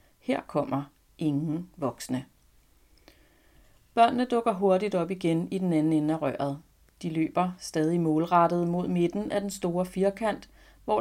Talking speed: 140 wpm